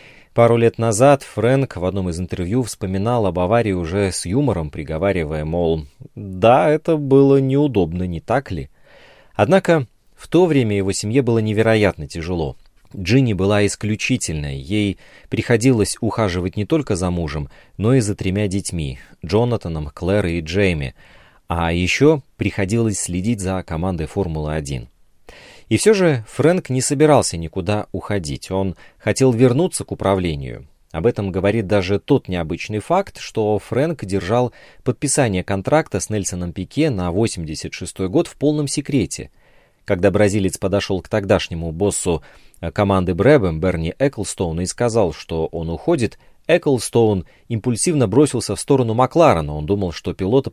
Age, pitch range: 30-49, 90-125 Hz